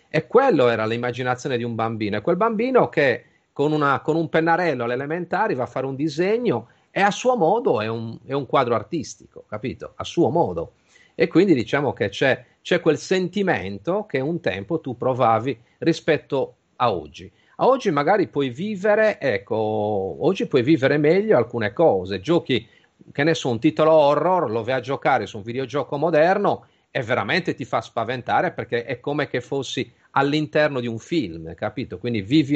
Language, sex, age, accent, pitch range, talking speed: Italian, male, 40-59, native, 115-160 Hz, 175 wpm